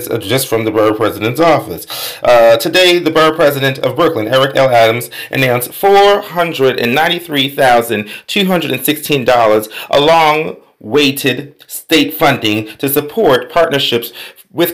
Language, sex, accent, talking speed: English, male, American, 110 wpm